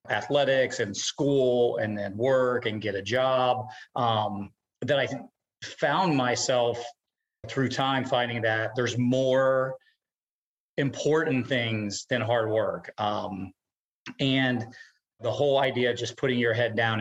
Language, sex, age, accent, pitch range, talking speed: English, male, 40-59, American, 110-135 Hz, 130 wpm